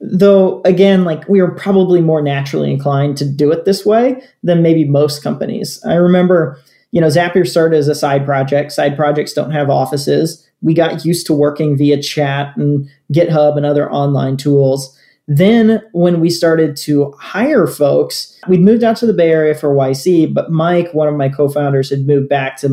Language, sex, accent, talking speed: English, male, American, 190 wpm